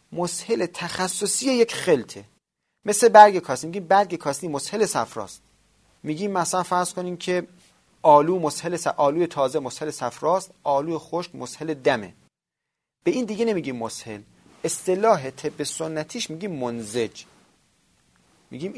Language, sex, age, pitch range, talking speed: Persian, male, 30-49, 130-185 Hz, 125 wpm